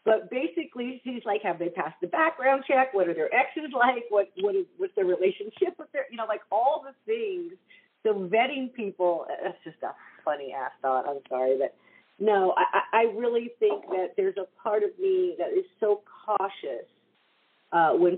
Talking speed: 190 wpm